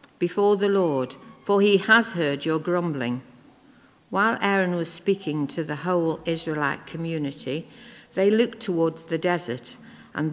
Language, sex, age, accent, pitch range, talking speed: English, female, 60-79, British, 155-210 Hz, 140 wpm